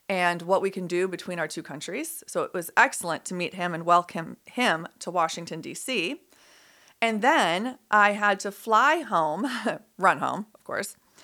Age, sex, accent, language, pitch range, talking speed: 30-49, female, American, English, 180-245 Hz, 175 wpm